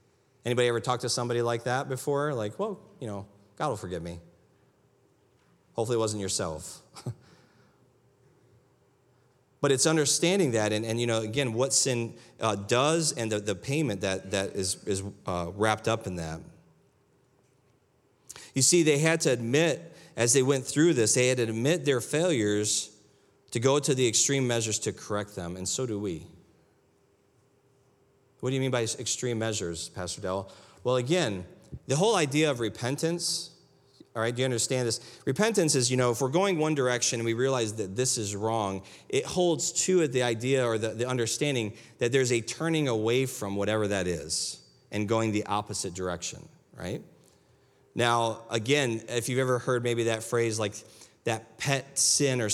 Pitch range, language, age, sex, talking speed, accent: 105-135 Hz, English, 30-49, male, 175 wpm, American